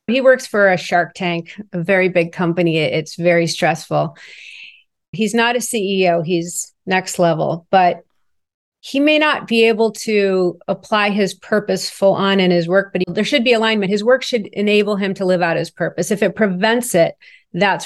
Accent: American